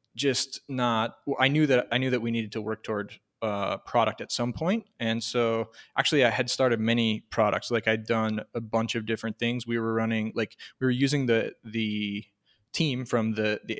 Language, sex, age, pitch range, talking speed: English, male, 20-39, 110-120 Hz, 205 wpm